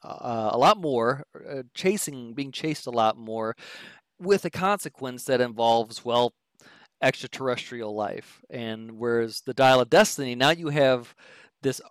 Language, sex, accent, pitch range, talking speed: English, male, American, 120-150 Hz, 145 wpm